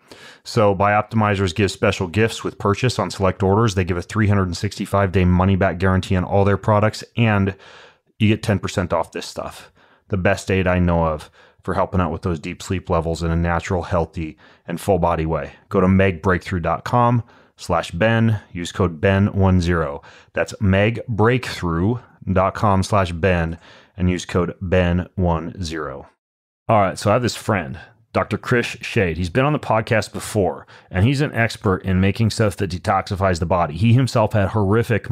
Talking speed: 160 wpm